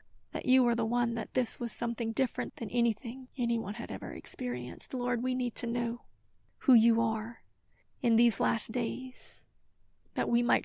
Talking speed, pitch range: 175 wpm, 210-245 Hz